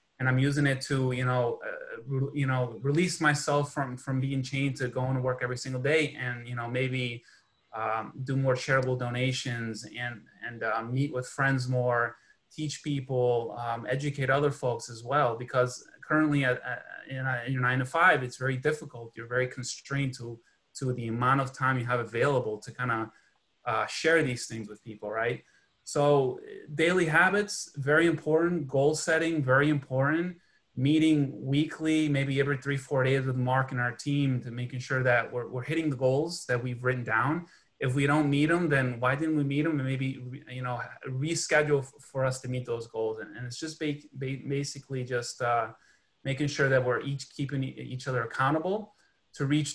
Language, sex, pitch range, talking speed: English, male, 125-145 Hz, 190 wpm